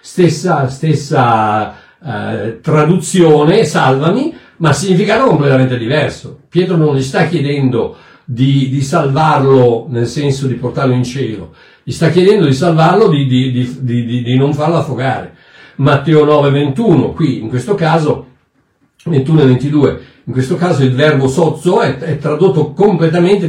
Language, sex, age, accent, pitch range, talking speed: Italian, male, 60-79, native, 130-170 Hz, 135 wpm